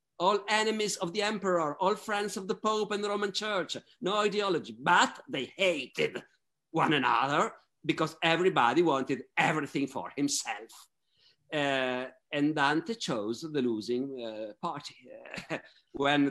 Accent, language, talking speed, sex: native, Italian, 130 wpm, male